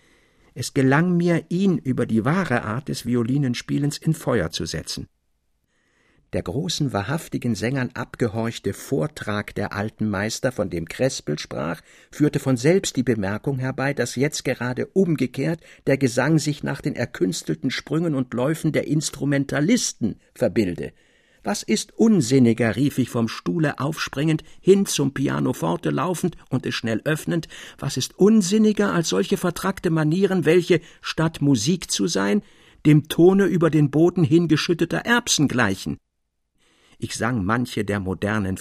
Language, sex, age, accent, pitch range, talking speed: German, male, 60-79, German, 110-160 Hz, 140 wpm